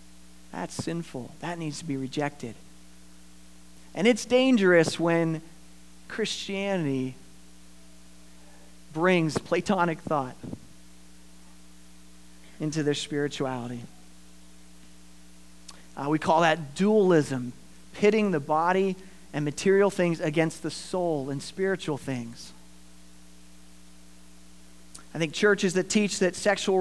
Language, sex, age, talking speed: English, male, 40-59, 95 wpm